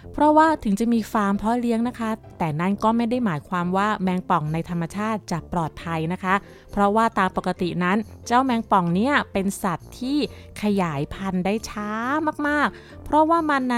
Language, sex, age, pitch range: Thai, female, 20-39, 180-235 Hz